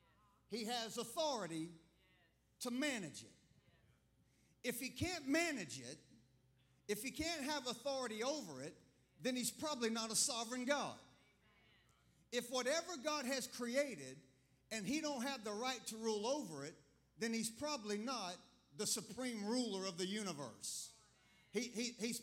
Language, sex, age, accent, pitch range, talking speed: English, male, 50-69, American, 180-245 Hz, 140 wpm